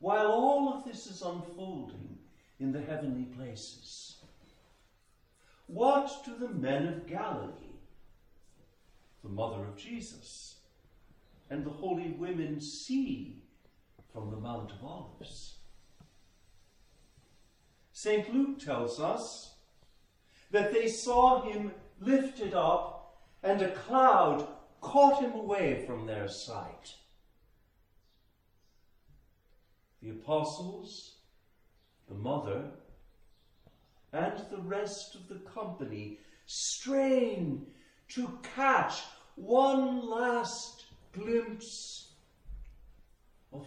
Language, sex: English, male